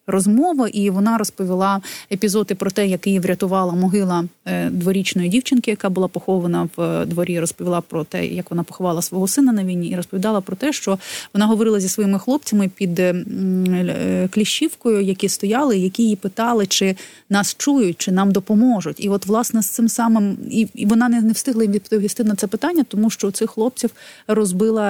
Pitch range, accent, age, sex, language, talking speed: 185-225 Hz, native, 30-49, female, Ukrainian, 170 wpm